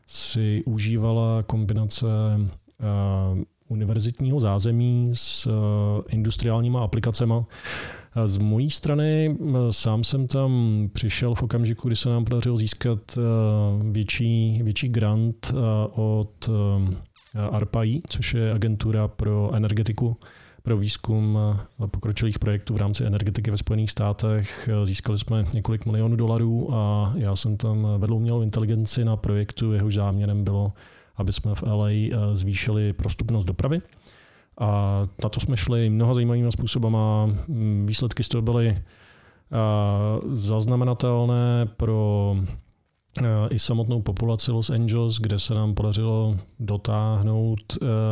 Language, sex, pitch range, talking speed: Czech, male, 105-115 Hz, 115 wpm